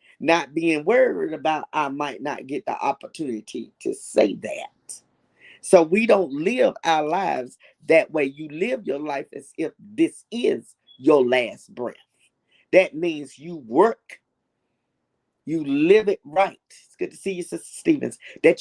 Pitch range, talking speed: 170-245 Hz, 155 wpm